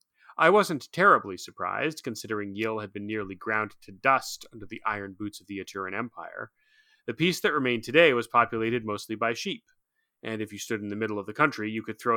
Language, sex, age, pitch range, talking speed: English, male, 30-49, 110-155 Hz, 210 wpm